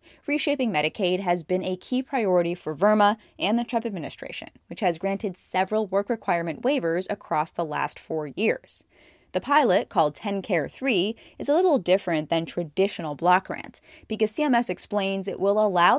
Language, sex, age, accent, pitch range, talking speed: English, female, 10-29, American, 175-225 Hz, 160 wpm